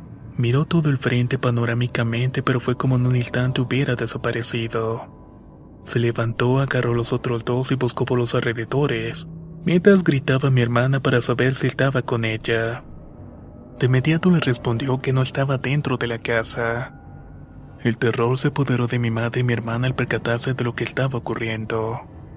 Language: Spanish